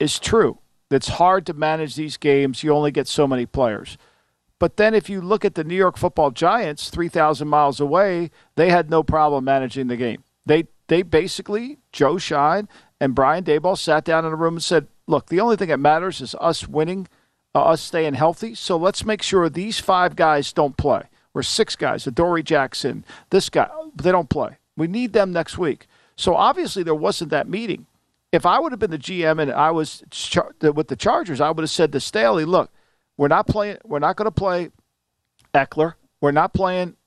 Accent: American